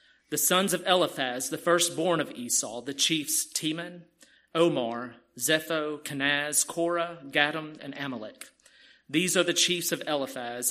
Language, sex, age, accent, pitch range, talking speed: English, male, 40-59, American, 135-170 Hz, 135 wpm